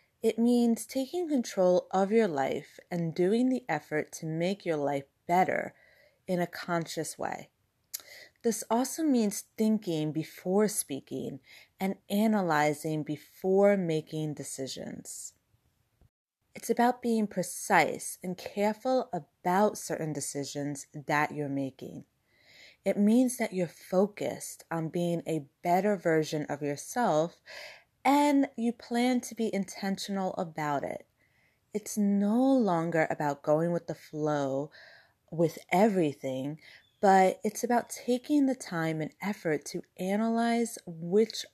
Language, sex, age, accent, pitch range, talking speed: English, female, 30-49, American, 150-215 Hz, 120 wpm